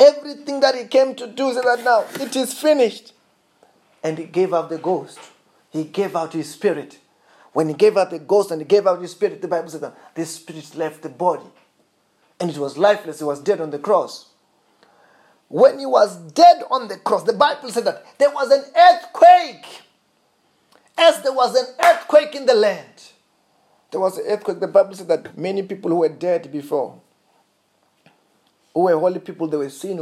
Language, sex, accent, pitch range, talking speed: English, male, South African, 170-280 Hz, 195 wpm